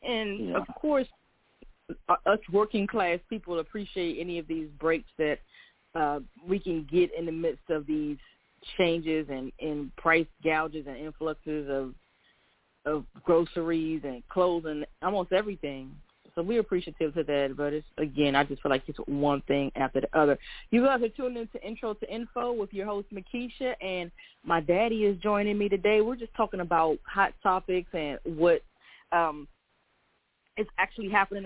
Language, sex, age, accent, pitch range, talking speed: English, female, 20-39, American, 160-195 Hz, 165 wpm